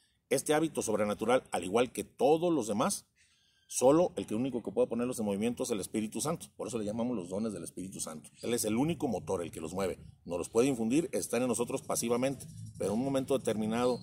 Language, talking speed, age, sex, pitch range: Spanish, 225 wpm, 40-59, male, 110-135 Hz